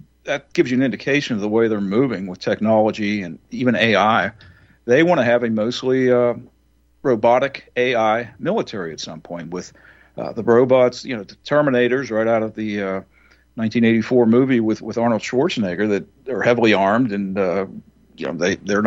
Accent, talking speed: American, 180 wpm